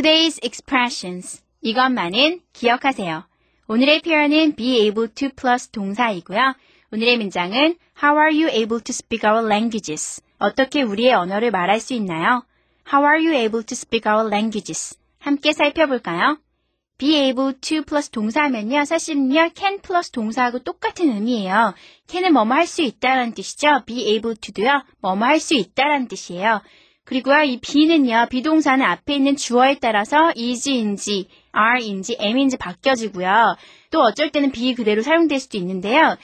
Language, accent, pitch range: Korean, native, 215-300 Hz